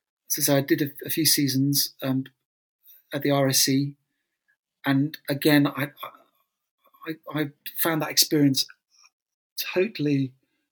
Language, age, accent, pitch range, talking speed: English, 40-59, British, 130-155 Hz, 120 wpm